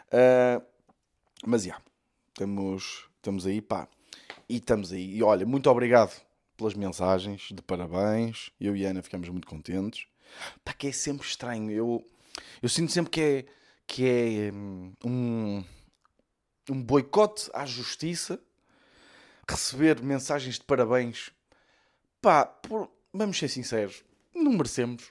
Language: Portuguese